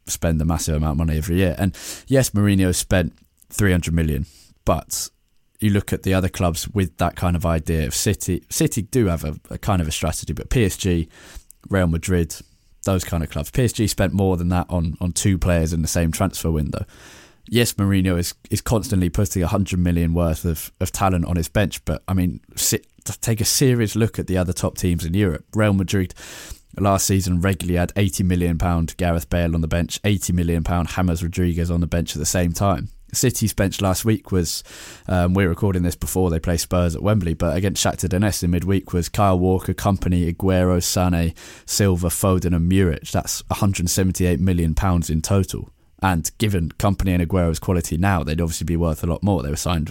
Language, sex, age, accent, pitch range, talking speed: English, male, 20-39, British, 85-100 Hz, 205 wpm